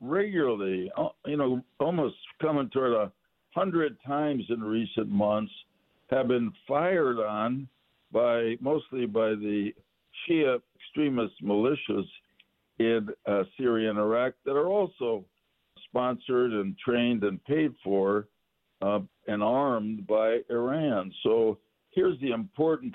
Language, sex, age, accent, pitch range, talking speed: English, male, 60-79, American, 105-145 Hz, 120 wpm